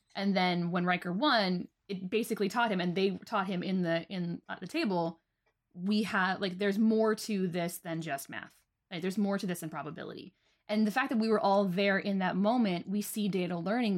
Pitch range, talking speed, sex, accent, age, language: 170-210 Hz, 225 wpm, female, American, 20-39, English